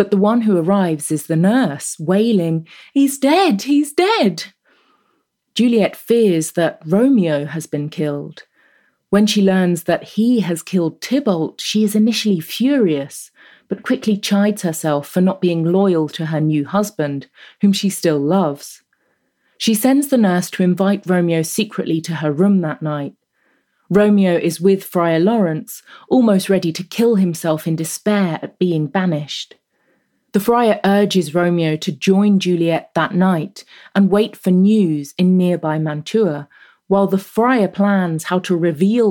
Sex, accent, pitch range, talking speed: female, British, 165-205 Hz, 150 wpm